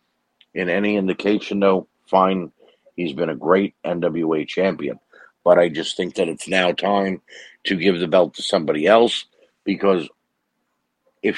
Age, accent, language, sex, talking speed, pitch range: 50-69, American, English, male, 150 wpm, 85-100 Hz